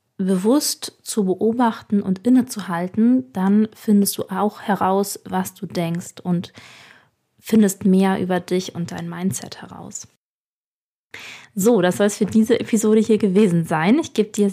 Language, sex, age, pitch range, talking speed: German, female, 20-39, 185-220 Hz, 145 wpm